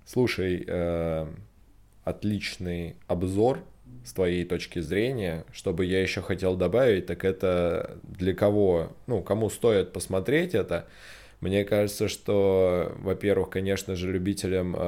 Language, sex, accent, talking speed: Russian, male, native, 115 wpm